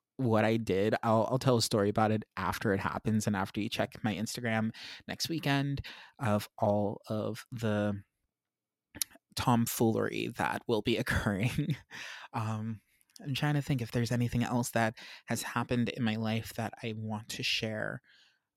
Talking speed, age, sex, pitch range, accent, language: 160 wpm, 20-39, male, 110-130 Hz, American, English